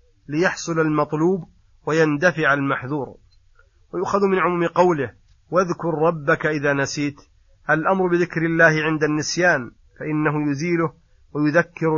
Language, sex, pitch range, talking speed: Arabic, male, 140-165 Hz, 100 wpm